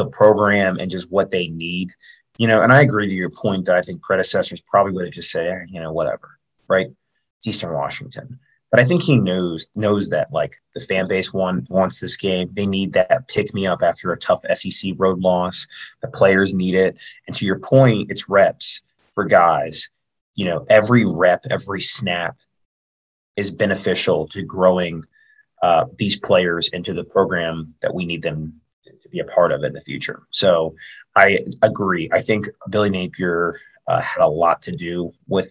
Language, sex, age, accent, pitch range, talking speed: English, male, 30-49, American, 90-110 Hz, 190 wpm